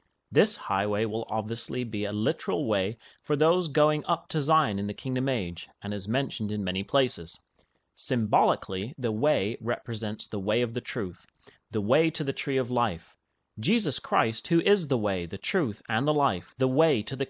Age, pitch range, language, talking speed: 30-49, 105-150 Hz, English, 190 wpm